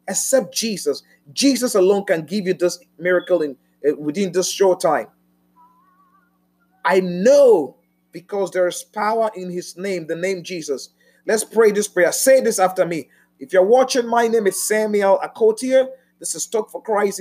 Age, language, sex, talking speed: 30-49, Finnish, male, 165 wpm